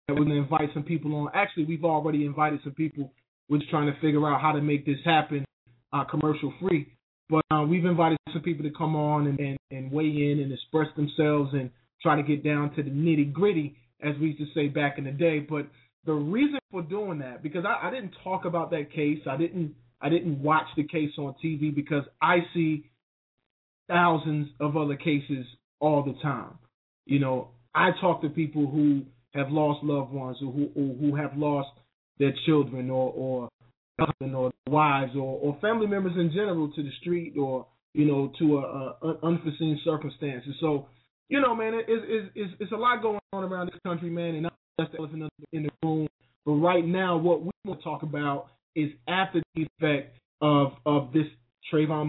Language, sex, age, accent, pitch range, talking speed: English, male, 20-39, American, 145-170 Hz, 205 wpm